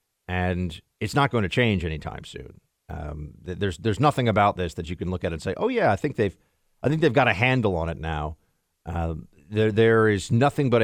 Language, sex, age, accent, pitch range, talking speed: English, male, 40-59, American, 90-135 Hz, 225 wpm